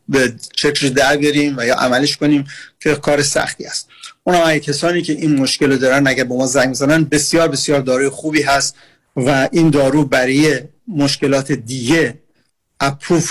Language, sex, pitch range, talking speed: Persian, male, 135-155 Hz, 165 wpm